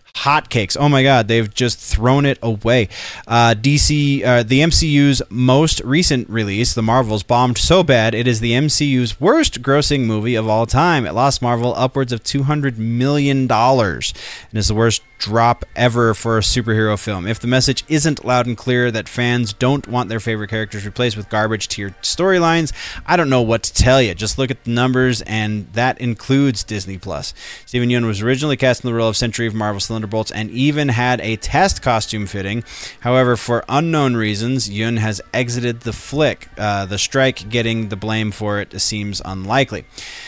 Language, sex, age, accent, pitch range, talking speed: English, male, 20-39, American, 110-135 Hz, 190 wpm